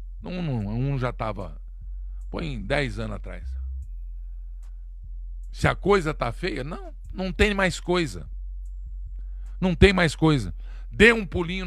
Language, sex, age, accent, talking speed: Portuguese, male, 50-69, Brazilian, 140 wpm